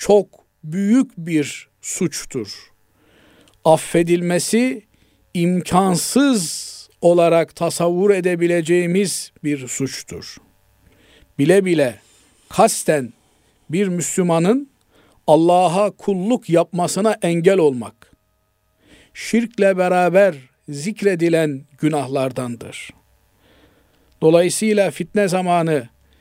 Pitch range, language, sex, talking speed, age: 145-180 Hz, Turkish, male, 65 wpm, 50-69